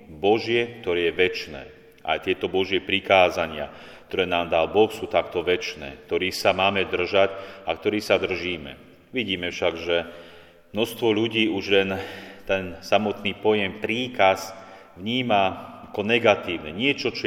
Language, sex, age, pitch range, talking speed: Slovak, male, 40-59, 95-110 Hz, 135 wpm